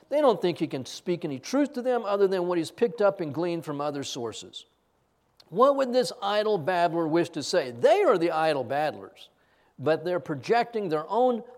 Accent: American